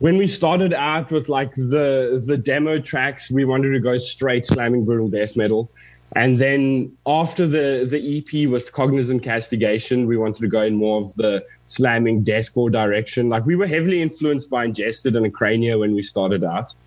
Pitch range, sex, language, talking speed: 110-130 Hz, male, English, 185 wpm